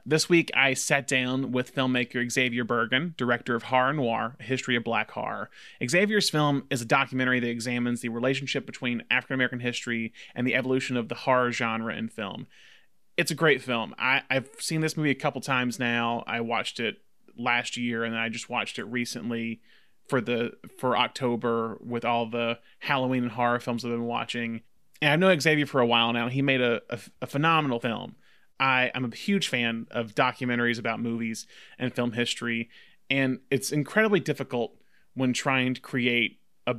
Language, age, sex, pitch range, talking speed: English, 30-49, male, 120-135 Hz, 185 wpm